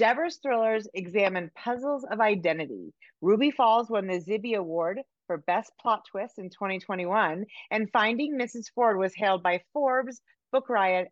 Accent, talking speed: American, 150 wpm